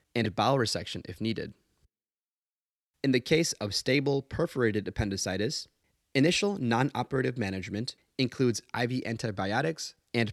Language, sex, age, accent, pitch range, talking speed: English, male, 30-49, American, 110-145 Hz, 110 wpm